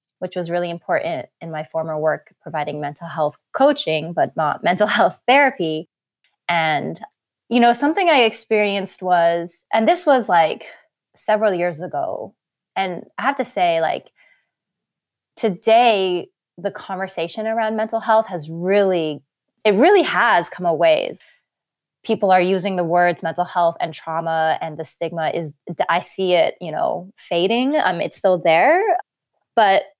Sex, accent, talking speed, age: female, American, 150 wpm, 20-39